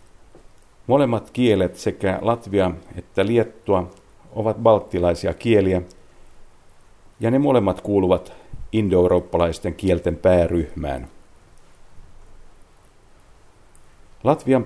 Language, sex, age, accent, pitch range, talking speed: Finnish, male, 50-69, native, 90-110 Hz, 70 wpm